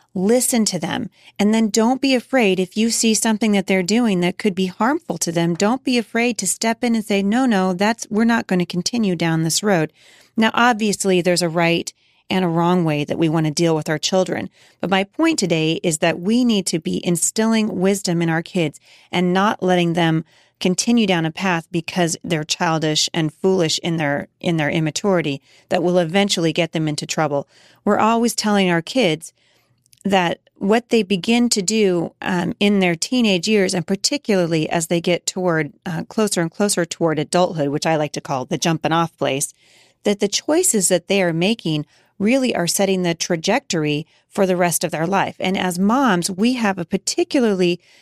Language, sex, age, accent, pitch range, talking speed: English, female, 40-59, American, 165-210 Hz, 200 wpm